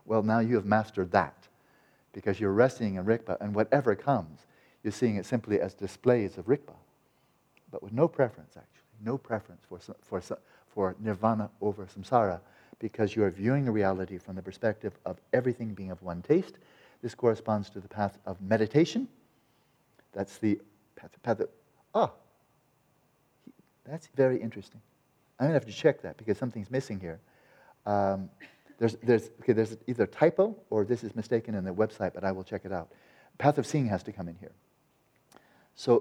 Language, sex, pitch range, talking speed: English, male, 100-125 Hz, 180 wpm